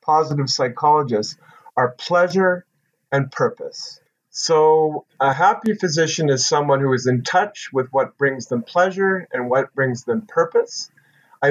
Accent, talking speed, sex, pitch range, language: American, 140 wpm, male, 135-195 Hz, English